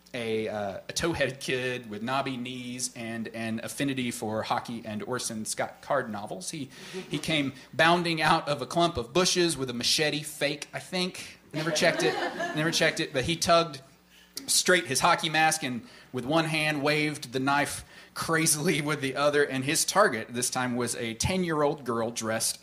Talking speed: 180 wpm